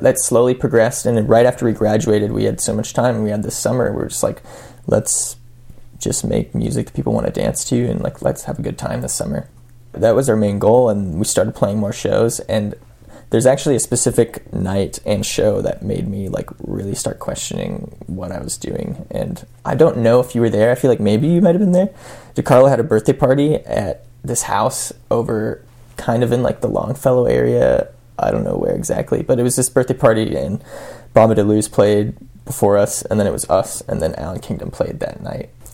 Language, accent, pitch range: English, American, 110-130 Hz